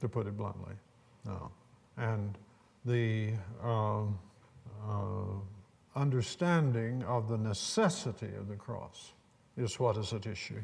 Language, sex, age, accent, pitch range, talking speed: English, male, 60-79, American, 110-140 Hz, 120 wpm